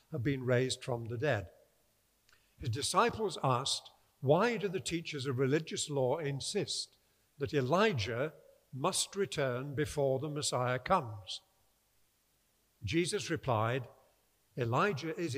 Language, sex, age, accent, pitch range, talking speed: English, male, 50-69, British, 115-155 Hz, 115 wpm